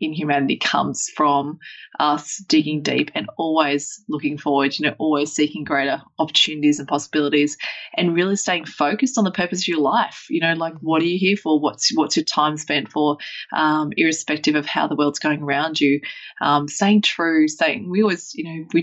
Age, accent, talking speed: 20-39, Australian, 200 wpm